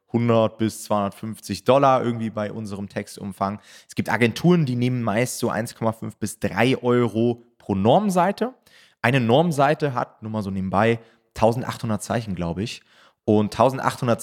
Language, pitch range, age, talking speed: German, 100-130 Hz, 20-39, 145 wpm